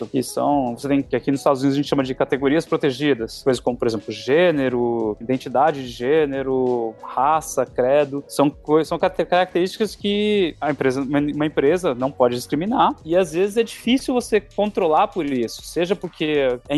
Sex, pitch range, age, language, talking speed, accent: male, 135-180 Hz, 20-39, Portuguese, 175 wpm, Brazilian